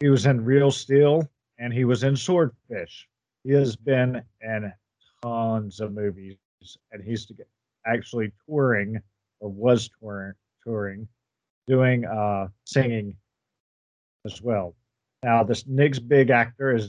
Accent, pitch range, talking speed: American, 110-135 Hz, 130 wpm